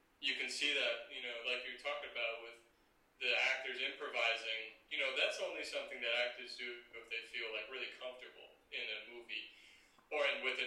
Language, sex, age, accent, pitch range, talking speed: English, male, 30-49, American, 115-125 Hz, 200 wpm